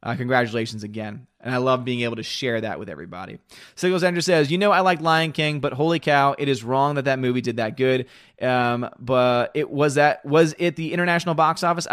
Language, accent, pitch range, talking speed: English, American, 125-155 Hz, 225 wpm